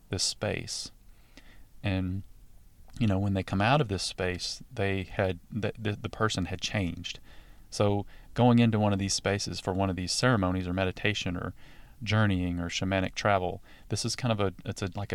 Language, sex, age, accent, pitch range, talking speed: English, male, 30-49, American, 95-110 Hz, 180 wpm